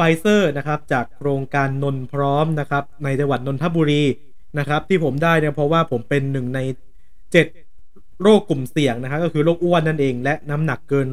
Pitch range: 130-165 Hz